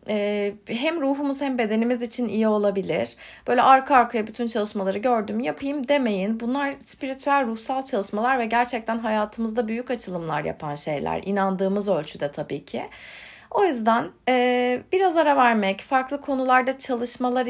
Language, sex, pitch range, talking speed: Turkish, female, 195-265 Hz, 130 wpm